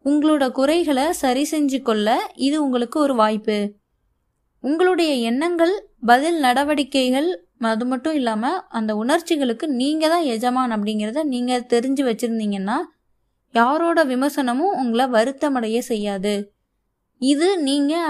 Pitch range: 230-295 Hz